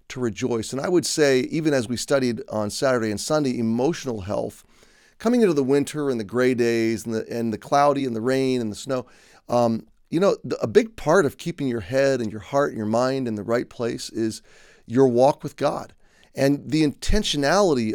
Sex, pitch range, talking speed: male, 110-140 Hz, 215 wpm